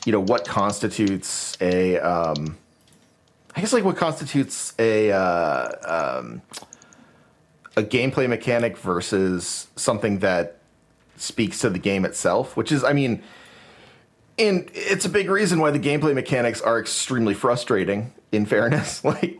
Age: 30-49